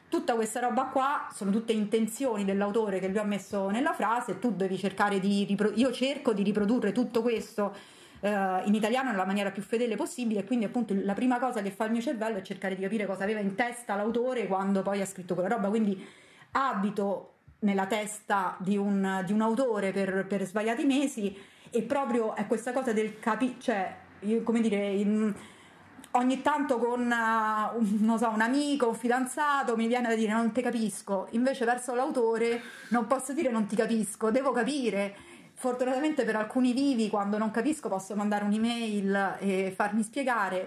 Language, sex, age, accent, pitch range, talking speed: Italian, female, 30-49, native, 200-245 Hz, 185 wpm